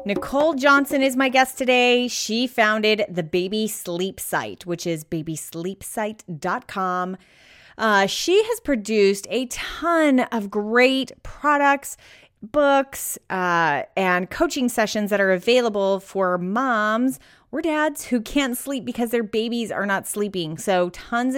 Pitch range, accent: 185-245 Hz, American